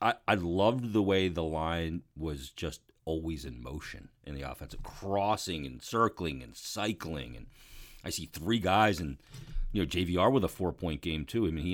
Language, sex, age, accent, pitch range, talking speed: English, male, 40-59, American, 85-110 Hz, 190 wpm